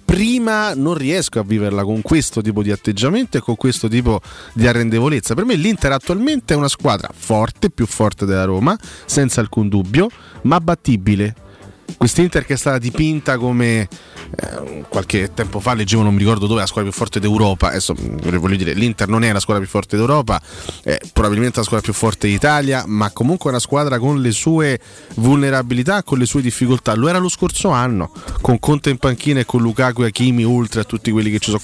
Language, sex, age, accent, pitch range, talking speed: Italian, male, 30-49, native, 105-135 Hz, 200 wpm